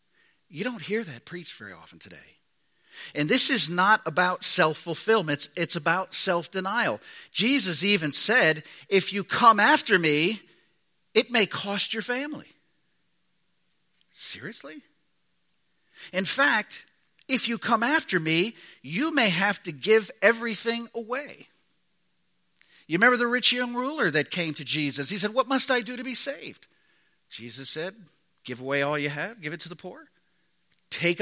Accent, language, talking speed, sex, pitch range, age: American, English, 150 wpm, male, 155-220 Hz, 50-69